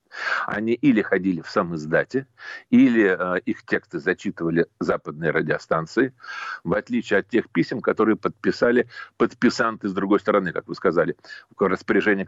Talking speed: 140 wpm